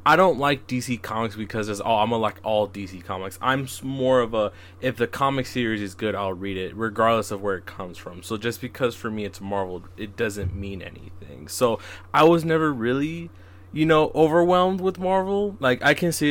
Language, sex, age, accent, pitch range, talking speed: English, male, 20-39, American, 95-125 Hz, 215 wpm